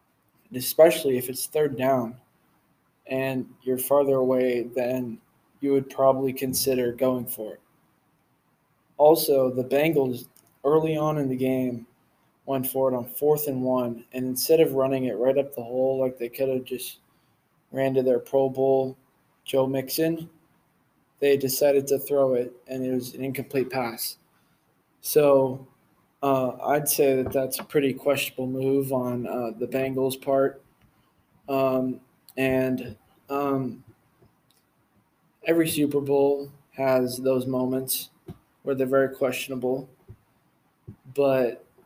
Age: 20-39